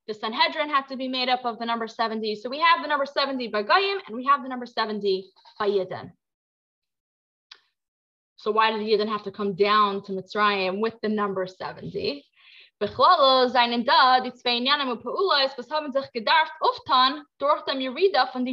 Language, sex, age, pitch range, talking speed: English, female, 20-39, 220-310 Hz, 125 wpm